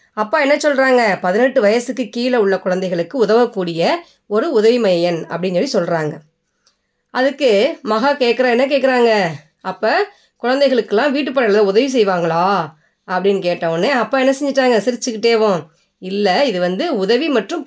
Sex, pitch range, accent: female, 195-280 Hz, native